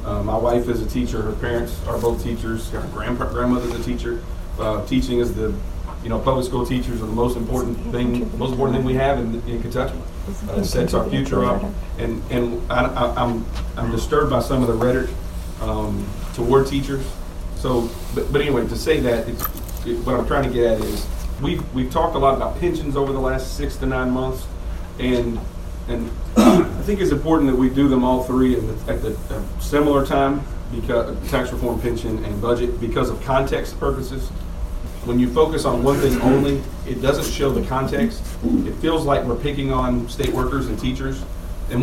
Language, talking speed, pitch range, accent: English, 200 wpm, 110-130 Hz, American